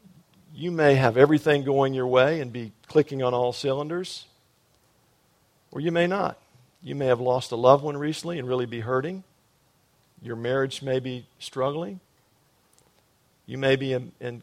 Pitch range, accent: 120-145 Hz, American